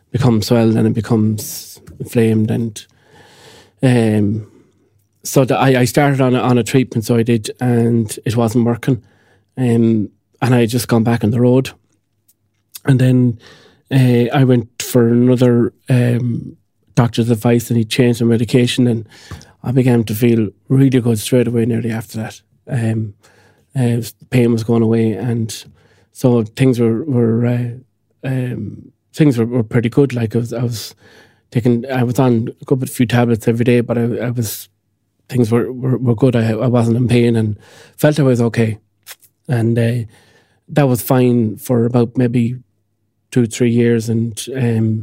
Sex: male